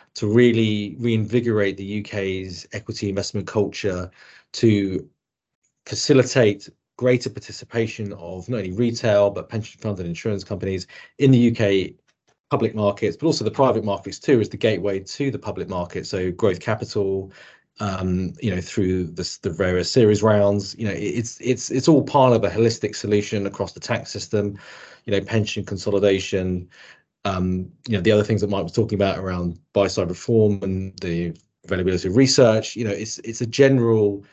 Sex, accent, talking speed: male, British, 170 wpm